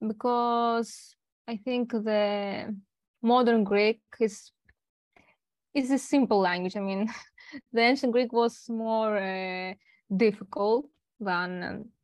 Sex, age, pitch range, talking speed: female, 20-39, 205-250 Hz, 105 wpm